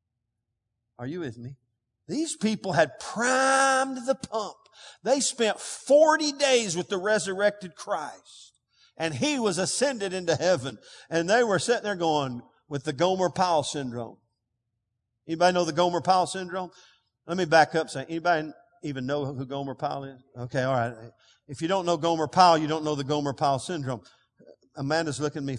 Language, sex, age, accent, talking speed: English, male, 50-69, American, 160 wpm